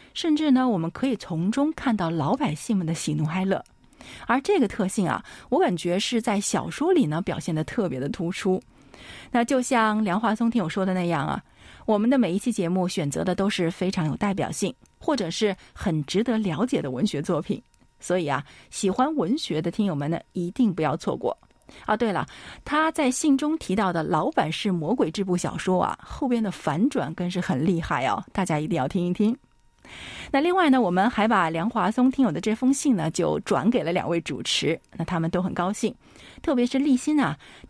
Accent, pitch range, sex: native, 175-245 Hz, female